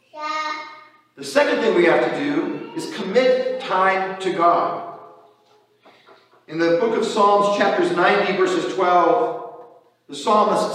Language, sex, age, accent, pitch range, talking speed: English, male, 50-69, American, 170-240 Hz, 130 wpm